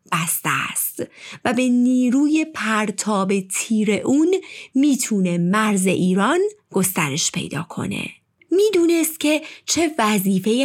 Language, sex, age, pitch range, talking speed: Persian, female, 30-49, 185-300 Hz, 100 wpm